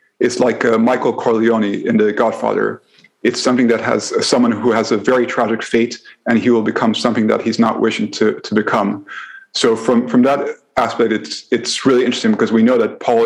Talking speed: 205 wpm